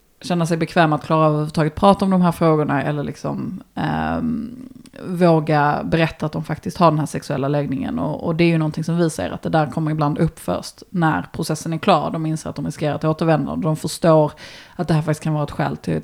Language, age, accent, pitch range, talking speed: Swedish, 30-49, native, 150-165 Hz, 235 wpm